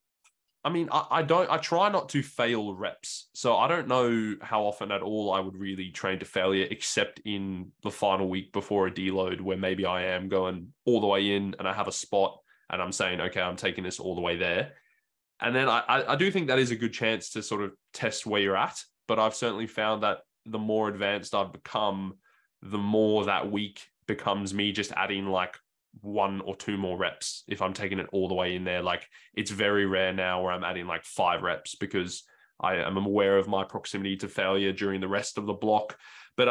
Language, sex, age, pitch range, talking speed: English, male, 10-29, 95-110 Hz, 225 wpm